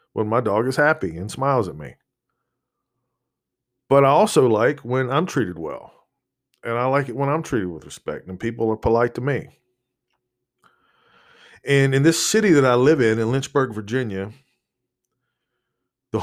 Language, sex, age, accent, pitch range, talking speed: English, male, 40-59, American, 105-130 Hz, 165 wpm